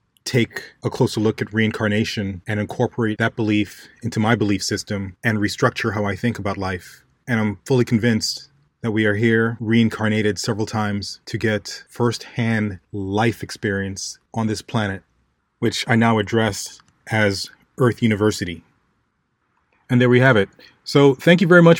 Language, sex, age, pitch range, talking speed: English, male, 30-49, 110-130 Hz, 155 wpm